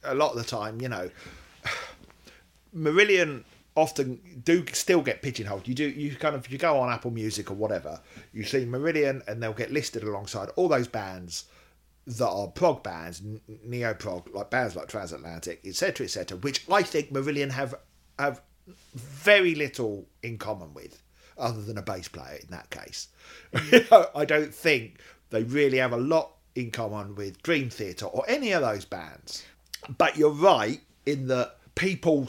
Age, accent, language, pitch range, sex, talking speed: 50-69, British, English, 100-140 Hz, male, 170 wpm